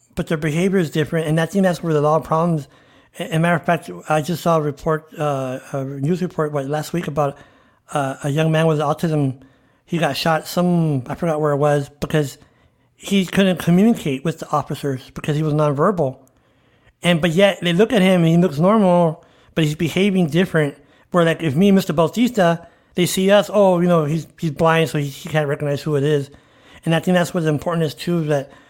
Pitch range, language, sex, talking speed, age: 145-170 Hz, English, male, 220 wpm, 60-79